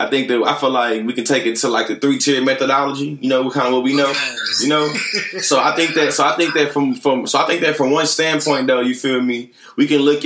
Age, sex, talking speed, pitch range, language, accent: 20-39, male, 285 wpm, 125-150 Hz, English, American